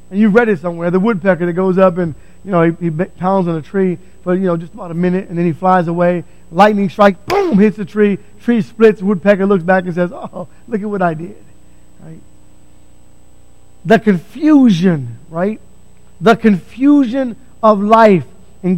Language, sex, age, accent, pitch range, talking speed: English, male, 50-69, American, 170-235 Hz, 190 wpm